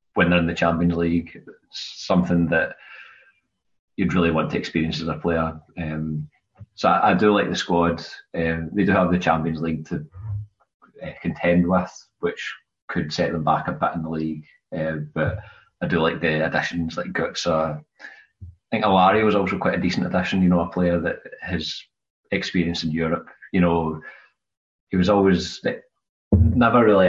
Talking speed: 180 wpm